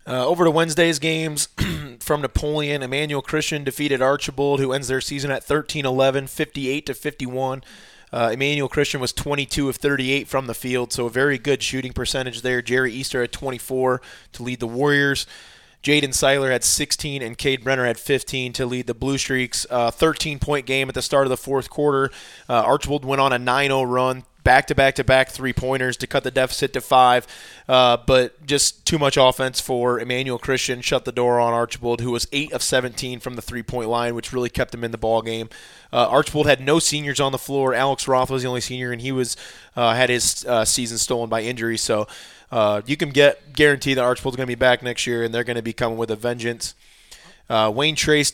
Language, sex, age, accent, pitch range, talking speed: English, male, 20-39, American, 125-140 Hz, 205 wpm